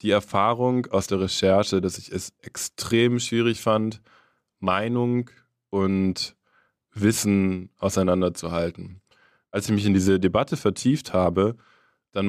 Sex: male